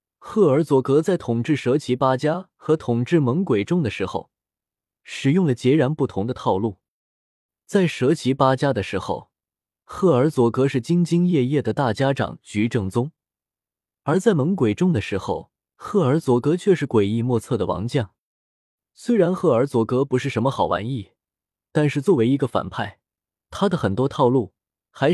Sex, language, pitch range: male, Chinese, 105-150 Hz